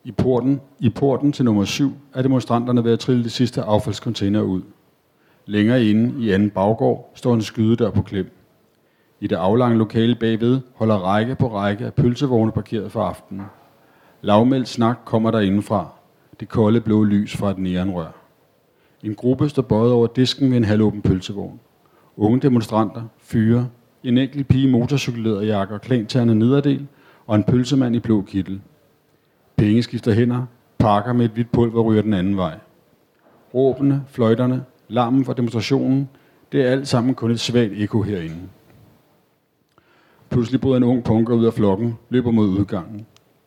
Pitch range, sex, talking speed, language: 105-125 Hz, male, 160 wpm, Danish